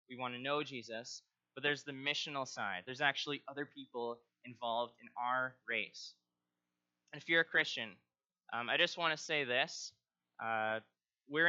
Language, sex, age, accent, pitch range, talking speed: English, male, 20-39, American, 110-145 Hz, 165 wpm